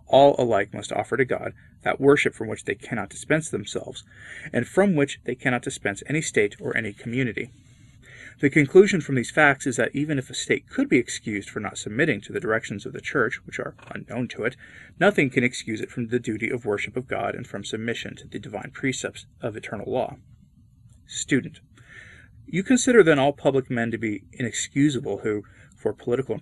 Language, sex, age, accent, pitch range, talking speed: English, male, 30-49, American, 115-150 Hz, 200 wpm